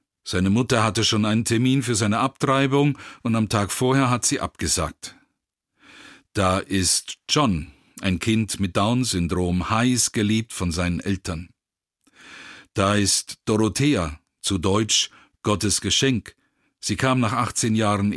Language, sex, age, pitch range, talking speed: German, male, 50-69, 95-120 Hz, 130 wpm